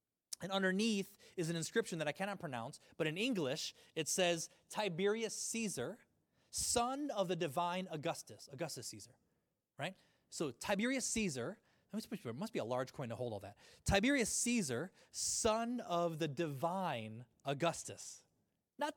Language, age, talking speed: English, 20-39, 140 wpm